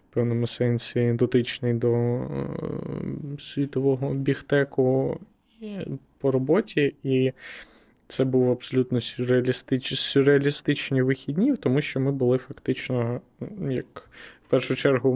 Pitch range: 120-135 Hz